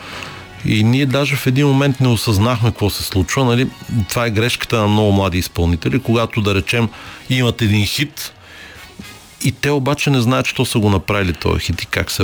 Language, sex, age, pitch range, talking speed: Bulgarian, male, 50-69, 95-120 Hz, 190 wpm